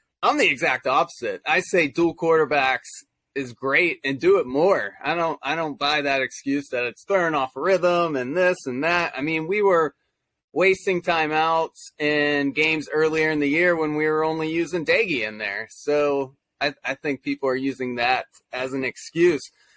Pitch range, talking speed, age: 145-190 Hz, 185 wpm, 20-39